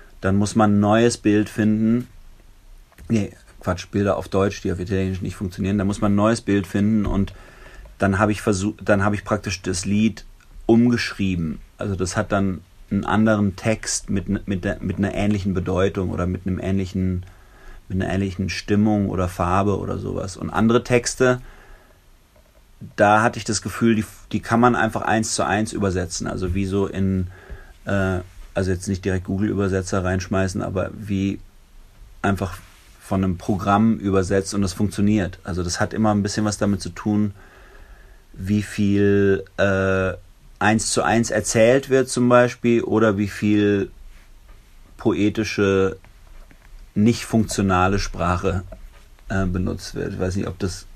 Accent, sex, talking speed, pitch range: German, male, 160 wpm, 95-110 Hz